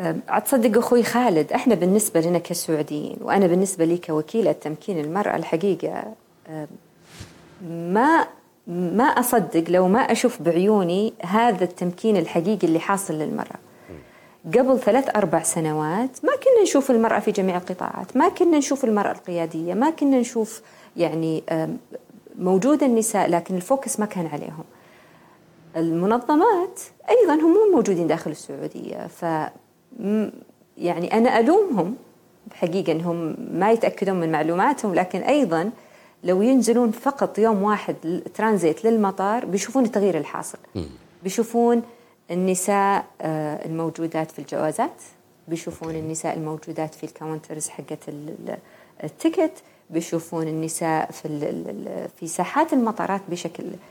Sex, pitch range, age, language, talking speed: female, 165-235 Hz, 40-59, Arabic, 110 wpm